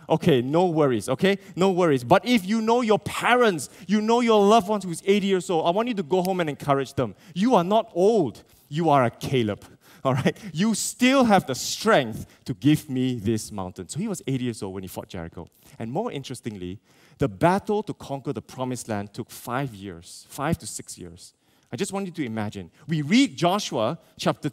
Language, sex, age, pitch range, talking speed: English, male, 20-39, 125-180 Hz, 215 wpm